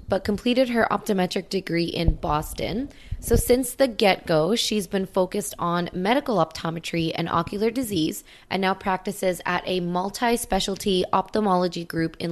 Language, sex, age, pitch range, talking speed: English, female, 20-39, 170-210 Hz, 140 wpm